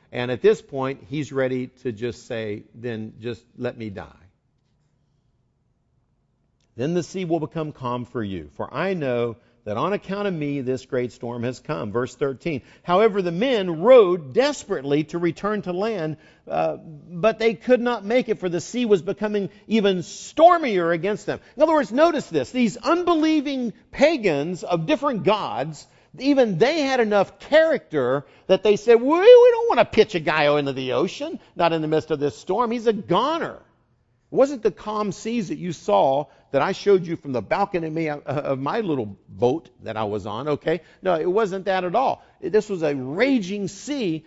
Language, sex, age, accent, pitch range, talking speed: English, male, 50-69, American, 140-225 Hz, 185 wpm